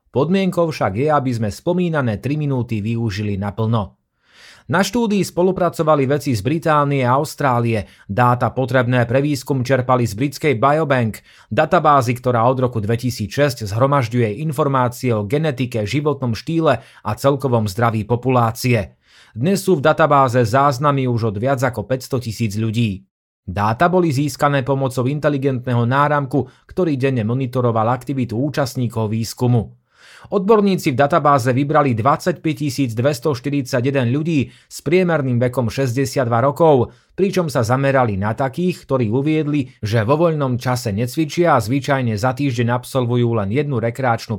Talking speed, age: 130 wpm, 30-49